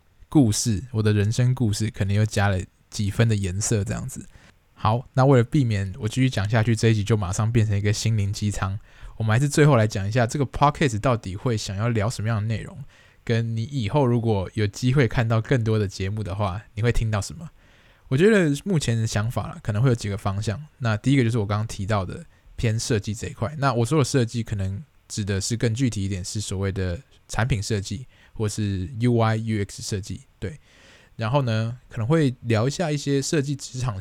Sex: male